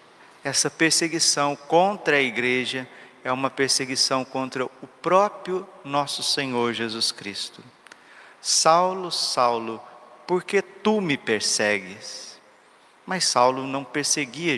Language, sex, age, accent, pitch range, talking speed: Portuguese, male, 40-59, Brazilian, 140-170 Hz, 105 wpm